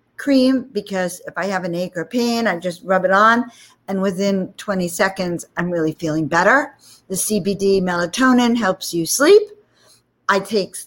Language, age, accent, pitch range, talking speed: English, 50-69, American, 165-205 Hz, 165 wpm